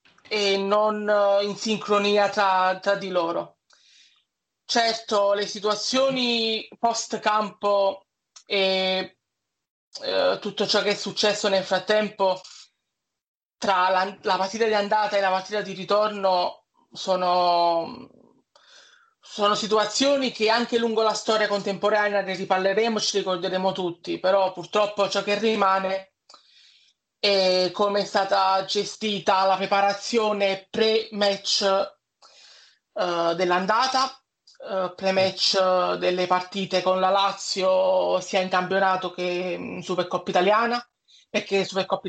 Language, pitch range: Italian, 185-215 Hz